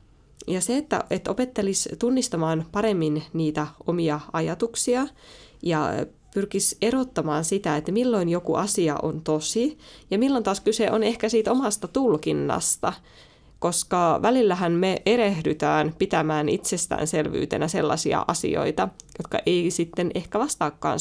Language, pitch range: Finnish, 160-215 Hz